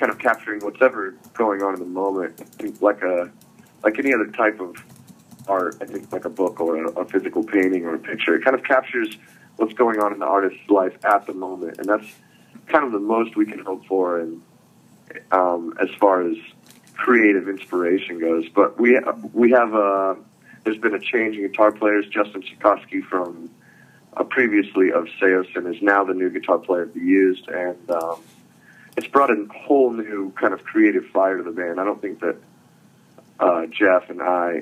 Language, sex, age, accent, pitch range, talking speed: English, male, 30-49, American, 90-115 Hz, 205 wpm